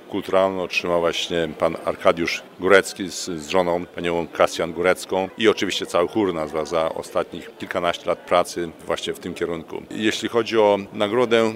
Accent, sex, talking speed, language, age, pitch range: native, male, 160 wpm, Polish, 50-69, 85-105 Hz